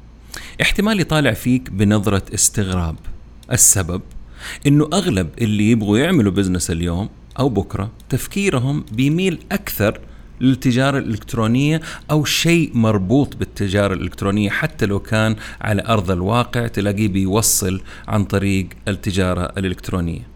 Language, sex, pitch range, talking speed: Arabic, male, 100-125 Hz, 110 wpm